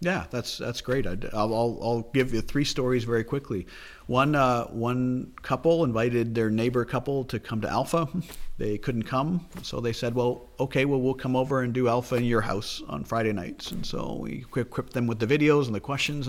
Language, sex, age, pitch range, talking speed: English, male, 40-59, 110-135 Hz, 205 wpm